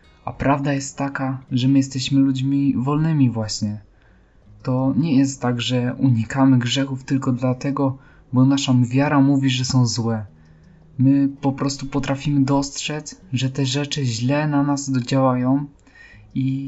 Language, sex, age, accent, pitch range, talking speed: Polish, male, 20-39, native, 125-140 Hz, 140 wpm